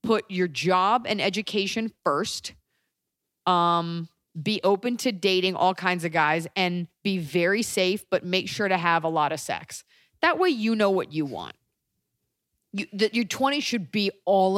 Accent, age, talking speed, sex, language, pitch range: American, 30-49, 175 wpm, female, English, 165-205 Hz